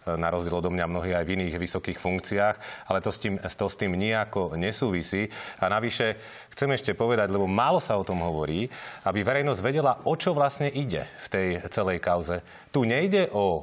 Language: Slovak